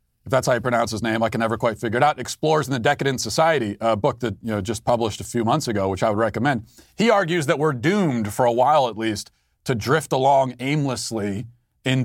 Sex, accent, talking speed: male, American, 235 wpm